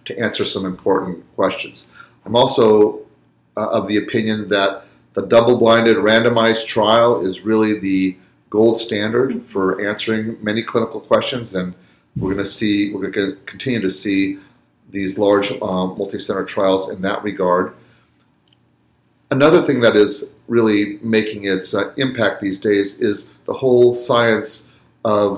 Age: 40-59